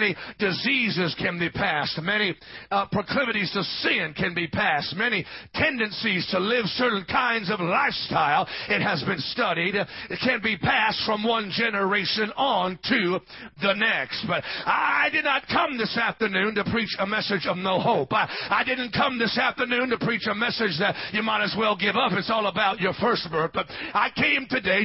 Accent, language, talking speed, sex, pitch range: American, English, 190 wpm, male, 205-255 Hz